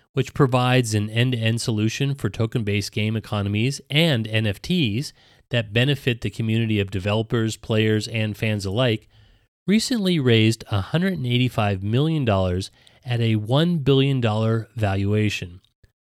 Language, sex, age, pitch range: English, male, 30-49, 105-140 Hz